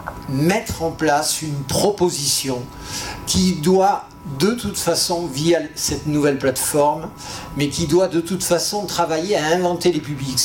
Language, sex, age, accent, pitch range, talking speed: French, male, 50-69, French, 140-175 Hz, 145 wpm